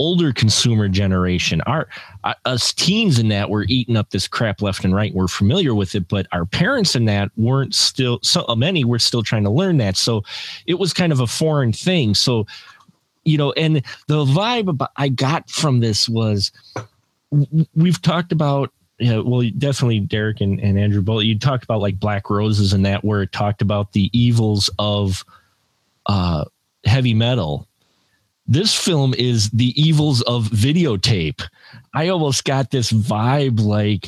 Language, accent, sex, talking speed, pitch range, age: English, American, male, 180 wpm, 100-135 Hz, 30-49